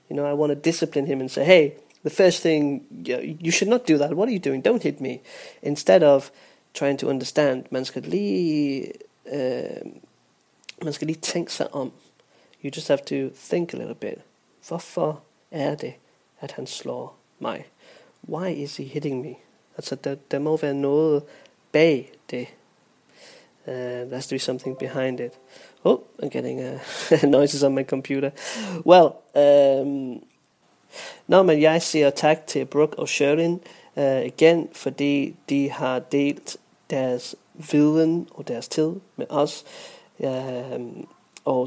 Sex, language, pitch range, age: male, Danish, 135-165 Hz, 20-39